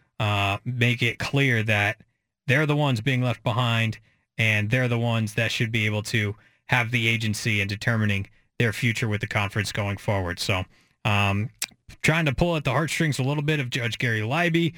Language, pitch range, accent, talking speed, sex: English, 110-150 Hz, American, 190 wpm, male